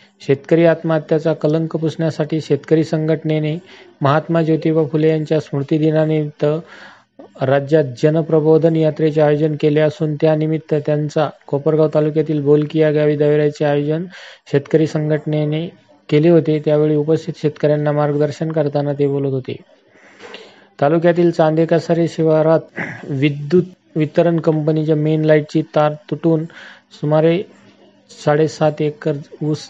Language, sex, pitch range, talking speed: Marathi, male, 145-160 Hz, 105 wpm